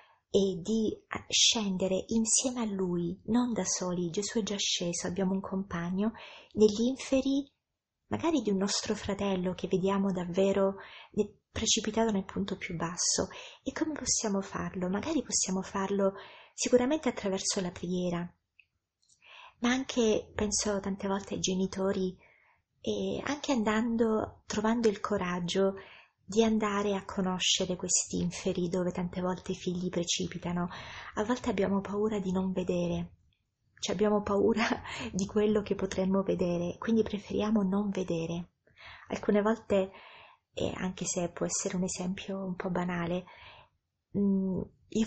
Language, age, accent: Italian, 30-49, native